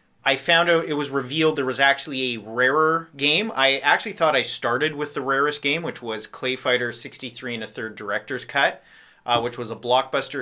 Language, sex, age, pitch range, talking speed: English, male, 30-49, 115-150 Hz, 205 wpm